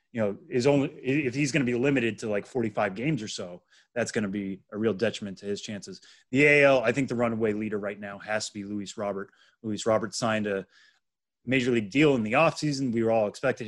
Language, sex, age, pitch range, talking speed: English, male, 30-49, 105-120 Hz, 235 wpm